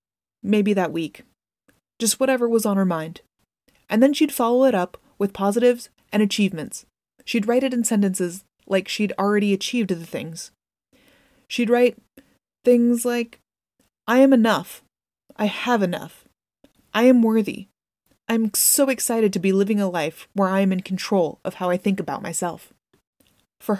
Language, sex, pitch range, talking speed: English, female, 185-235 Hz, 160 wpm